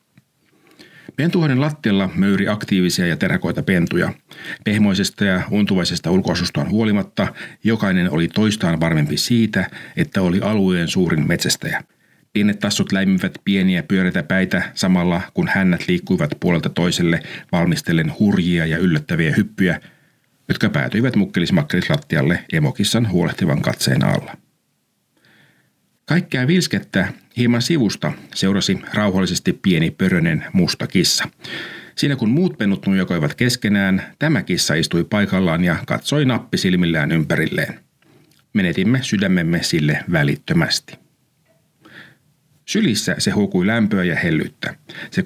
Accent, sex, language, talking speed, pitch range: native, male, Finnish, 105 wpm, 90-140 Hz